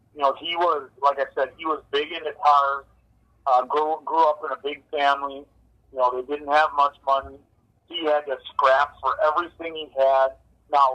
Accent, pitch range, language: American, 120-145 Hz, English